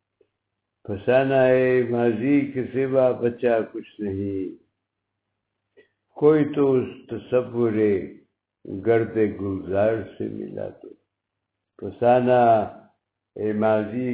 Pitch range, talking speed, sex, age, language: 100-120 Hz, 65 wpm, male, 60-79, Urdu